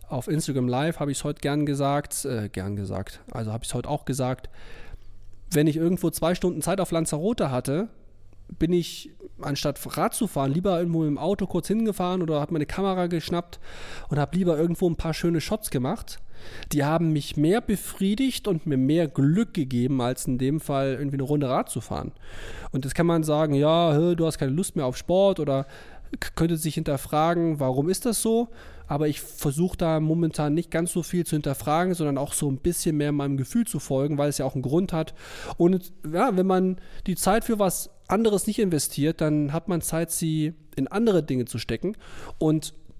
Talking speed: 200 wpm